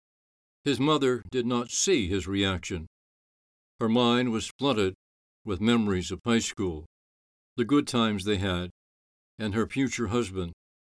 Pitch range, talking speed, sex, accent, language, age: 95-125 Hz, 140 wpm, male, American, English, 60-79